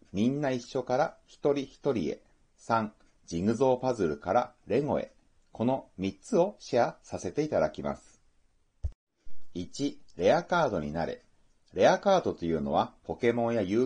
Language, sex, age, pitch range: Japanese, male, 30-49, 90-135 Hz